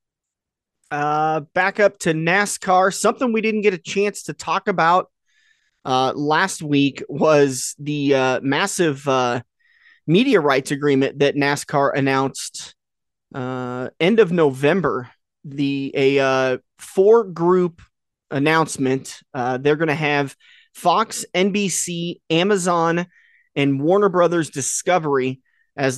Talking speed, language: 120 wpm, English